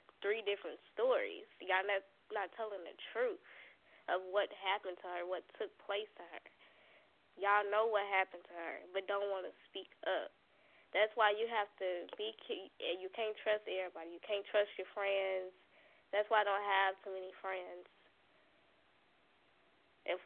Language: English